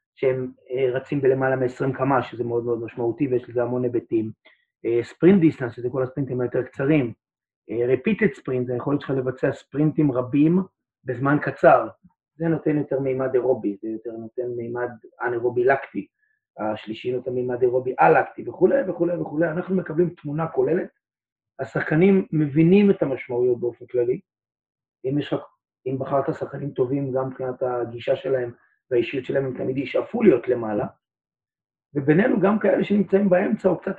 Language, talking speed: Hebrew, 140 wpm